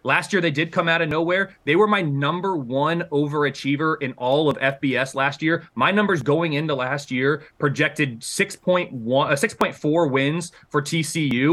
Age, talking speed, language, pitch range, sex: 20-39, 165 wpm, English, 140-170 Hz, male